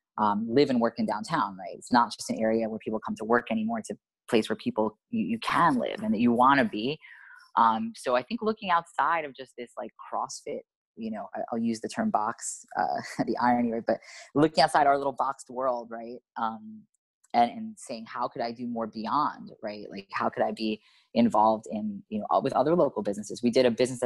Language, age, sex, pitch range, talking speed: English, 20-39, female, 115-160 Hz, 230 wpm